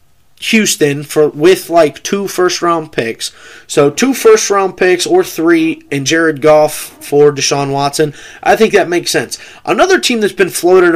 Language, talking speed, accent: English, 170 wpm, American